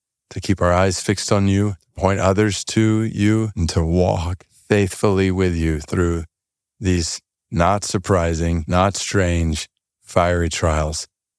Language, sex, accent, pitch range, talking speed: English, male, American, 95-135 Hz, 130 wpm